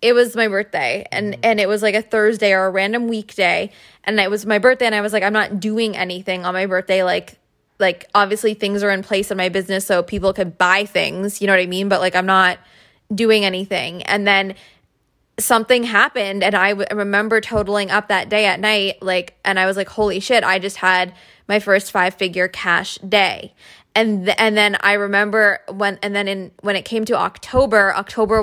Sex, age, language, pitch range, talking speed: female, 20-39, English, 190-215 Hz, 215 wpm